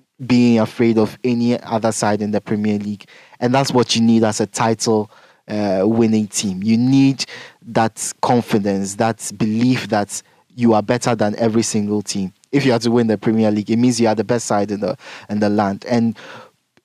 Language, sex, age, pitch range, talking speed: English, male, 20-39, 105-120 Hz, 195 wpm